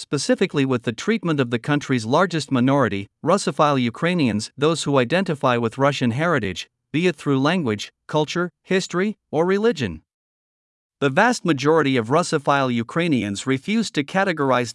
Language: Vietnamese